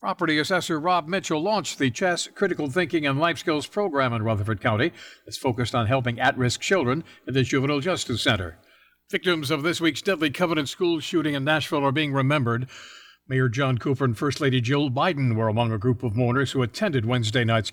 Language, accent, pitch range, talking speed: English, American, 125-155 Hz, 195 wpm